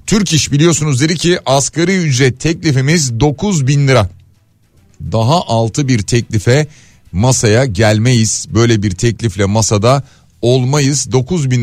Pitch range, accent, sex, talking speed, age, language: 110-150 Hz, native, male, 125 wpm, 40-59, Turkish